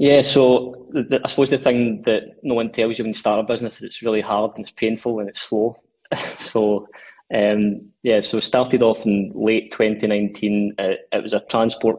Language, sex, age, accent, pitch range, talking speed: English, male, 20-39, British, 105-115 Hz, 200 wpm